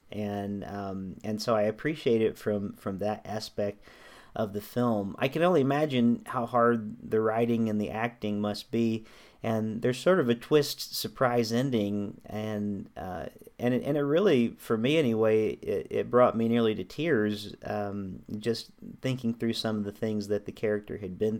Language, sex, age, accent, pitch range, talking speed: English, male, 40-59, American, 105-120 Hz, 180 wpm